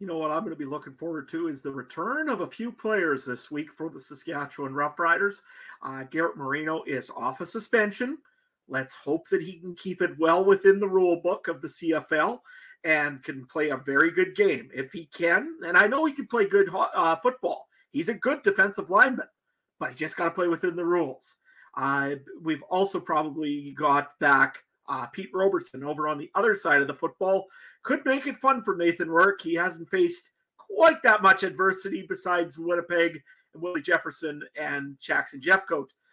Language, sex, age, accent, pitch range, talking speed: English, male, 40-59, American, 165-230 Hz, 195 wpm